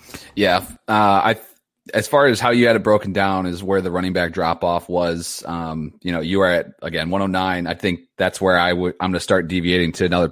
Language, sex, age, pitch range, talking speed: English, male, 30-49, 85-100 Hz, 240 wpm